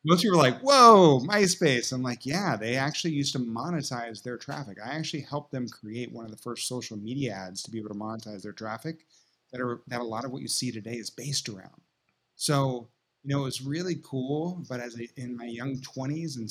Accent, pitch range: American, 115-135 Hz